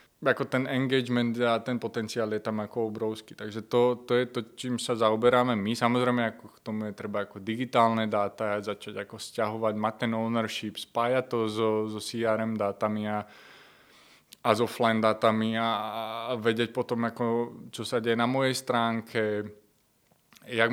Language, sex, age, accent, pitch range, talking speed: Czech, male, 20-39, native, 110-120 Hz, 155 wpm